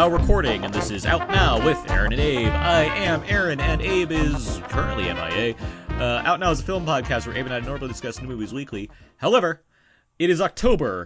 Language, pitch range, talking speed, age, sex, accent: English, 90-125 Hz, 210 wpm, 30-49, male, American